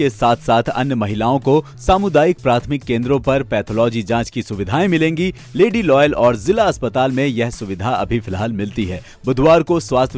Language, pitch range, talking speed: Hindi, 120-160 Hz, 175 wpm